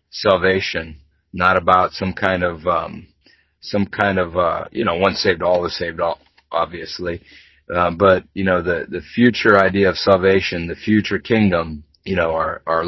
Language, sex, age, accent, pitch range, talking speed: English, male, 40-59, American, 90-100 Hz, 170 wpm